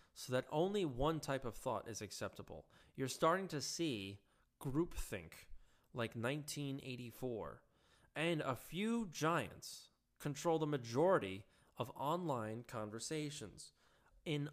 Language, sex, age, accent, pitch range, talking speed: English, male, 20-39, American, 130-175 Hz, 110 wpm